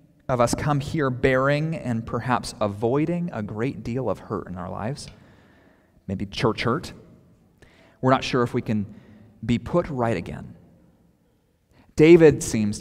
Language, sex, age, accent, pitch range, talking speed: English, male, 30-49, American, 105-140 Hz, 145 wpm